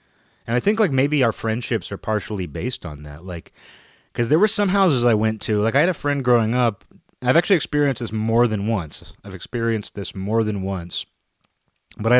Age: 30-49